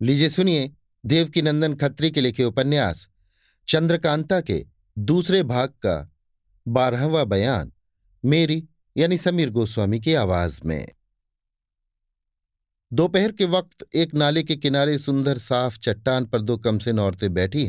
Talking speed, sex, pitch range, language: 125 wpm, male, 105-150 Hz, Hindi